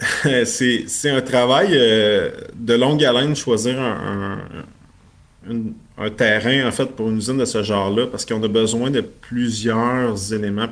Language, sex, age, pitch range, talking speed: French, male, 30-49, 105-125 Hz, 150 wpm